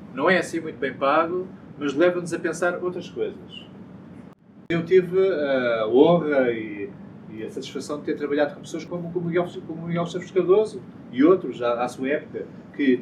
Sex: male